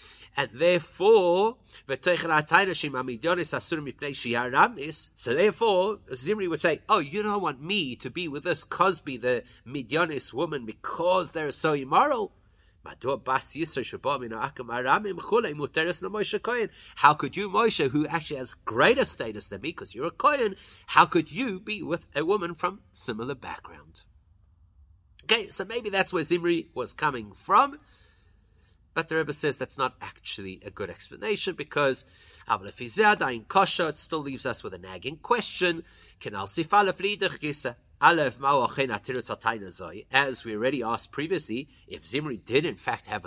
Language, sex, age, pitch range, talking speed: English, male, 30-49, 120-195 Hz, 120 wpm